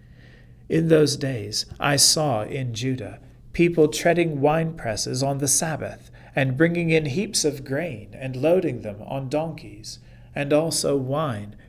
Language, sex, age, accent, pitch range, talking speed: English, male, 40-59, American, 120-150 Hz, 145 wpm